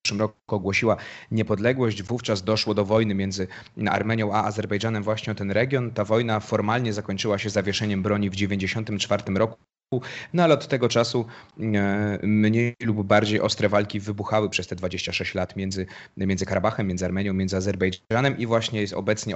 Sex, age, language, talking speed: male, 30-49, Polish, 155 wpm